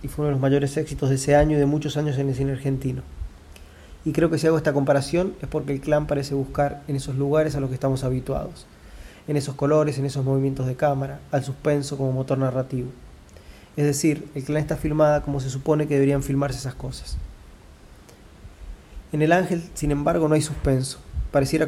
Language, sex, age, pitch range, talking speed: Spanish, male, 30-49, 135-150 Hz, 210 wpm